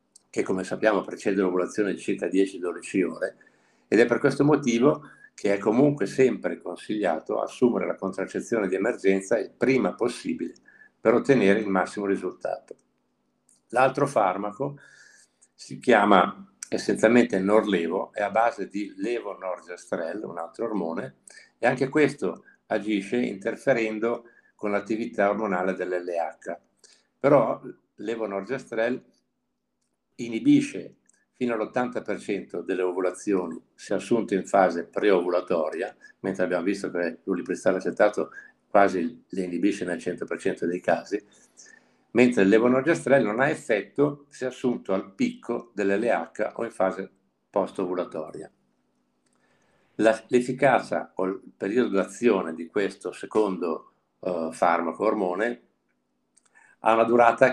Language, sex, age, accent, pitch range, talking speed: Italian, male, 60-79, native, 95-125 Hz, 120 wpm